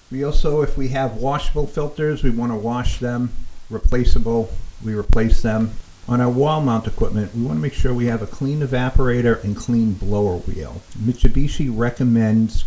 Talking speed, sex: 175 wpm, male